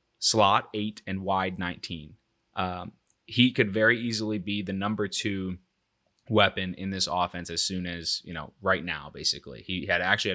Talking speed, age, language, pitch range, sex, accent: 170 wpm, 20-39, English, 90-105 Hz, male, American